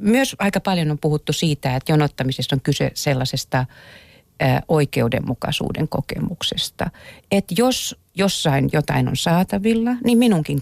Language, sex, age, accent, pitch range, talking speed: Finnish, female, 40-59, native, 130-165 Hz, 120 wpm